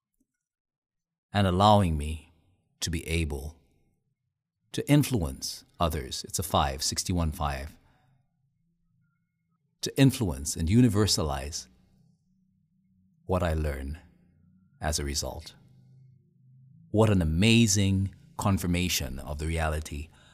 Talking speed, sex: 90 wpm, male